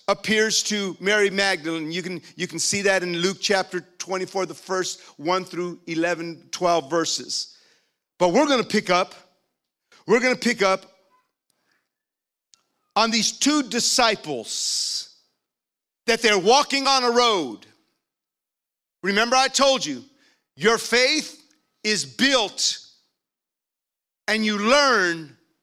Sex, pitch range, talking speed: male, 190-265 Hz, 120 wpm